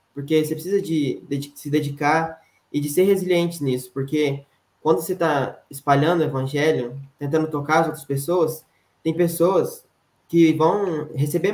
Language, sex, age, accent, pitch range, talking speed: Portuguese, male, 10-29, Brazilian, 130-160 Hz, 160 wpm